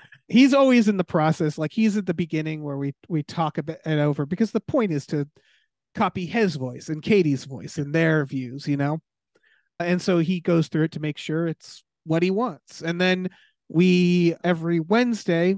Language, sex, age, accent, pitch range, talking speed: English, male, 30-49, American, 145-180 Hz, 195 wpm